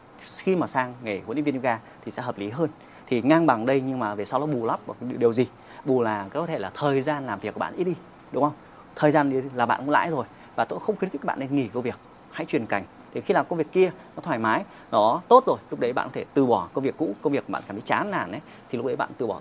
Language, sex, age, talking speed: Vietnamese, male, 30-49, 310 wpm